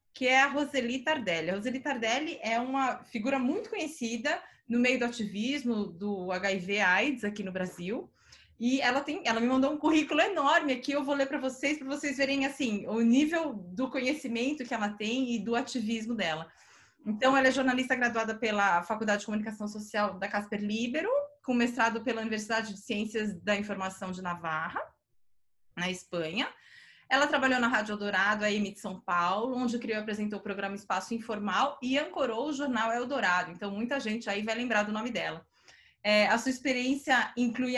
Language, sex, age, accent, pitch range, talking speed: Portuguese, female, 20-39, Brazilian, 210-265 Hz, 180 wpm